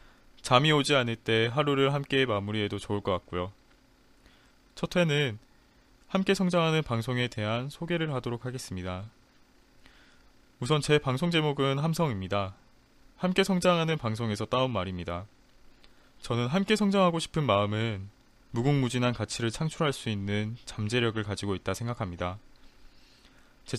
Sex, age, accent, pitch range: male, 20-39, native, 100-145 Hz